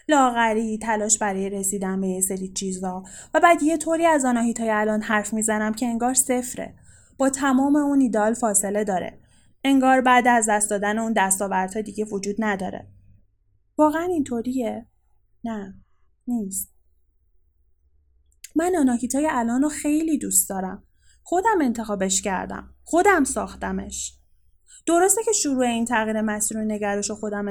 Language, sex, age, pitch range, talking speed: Persian, female, 10-29, 195-260 Hz, 135 wpm